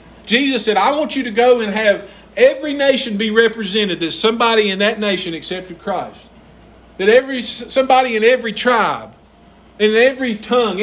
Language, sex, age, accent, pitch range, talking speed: English, male, 50-69, American, 180-240 Hz, 160 wpm